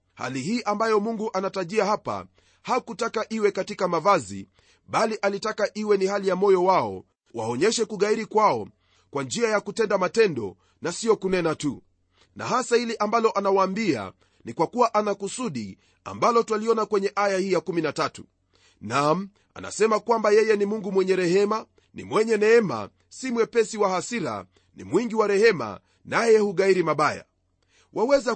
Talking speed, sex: 145 wpm, male